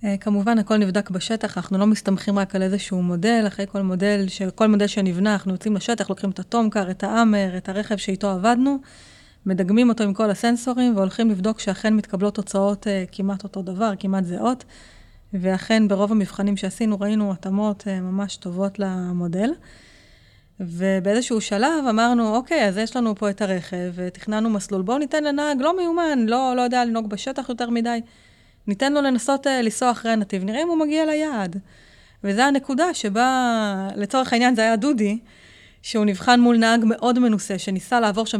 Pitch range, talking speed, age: 195-240 Hz, 165 wpm, 30-49